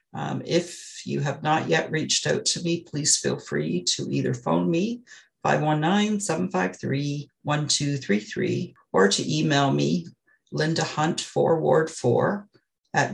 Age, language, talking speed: 50-69, English, 110 wpm